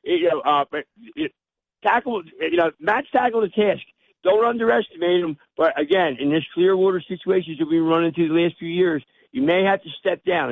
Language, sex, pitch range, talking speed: English, male, 160-195 Hz, 210 wpm